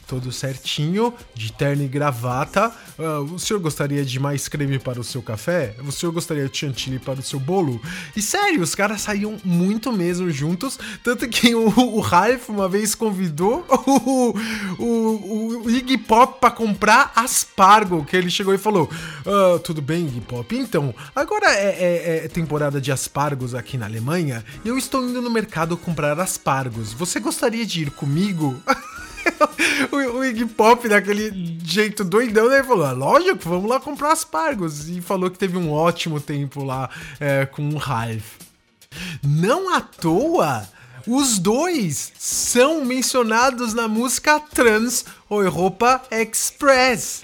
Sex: male